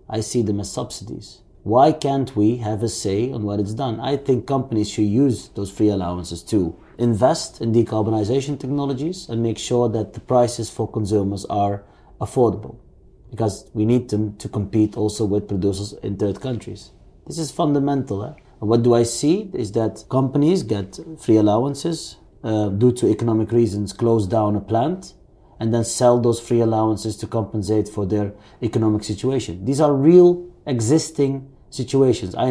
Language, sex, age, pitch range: English, male, 30-49, 105-130 Hz